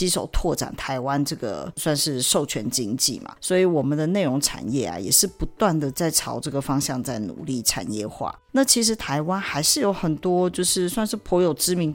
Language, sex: Chinese, female